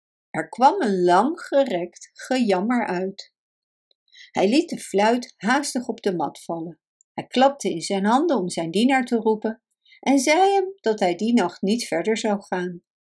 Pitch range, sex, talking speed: 180-275 Hz, female, 170 wpm